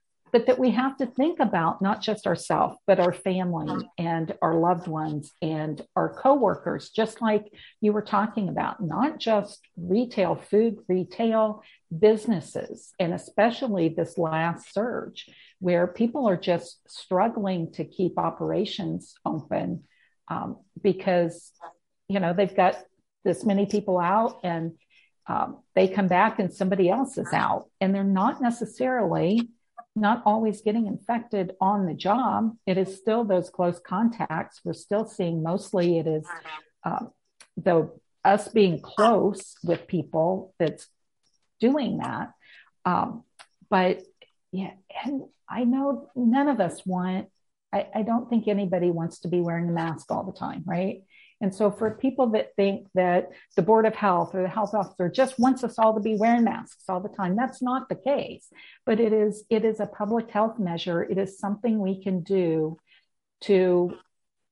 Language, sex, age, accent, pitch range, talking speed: English, female, 50-69, American, 180-225 Hz, 160 wpm